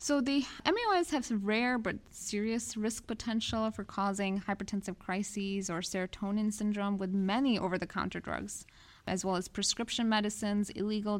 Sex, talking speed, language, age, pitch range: female, 145 wpm, English, 20-39, 190-220 Hz